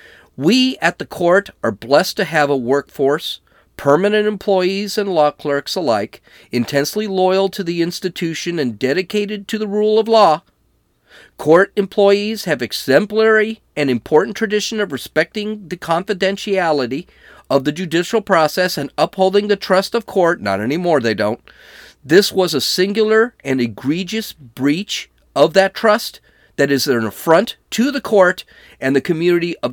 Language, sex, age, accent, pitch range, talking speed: English, male, 40-59, American, 140-195 Hz, 150 wpm